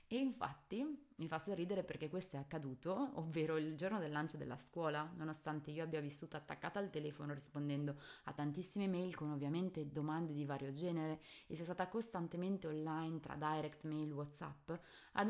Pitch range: 155-190 Hz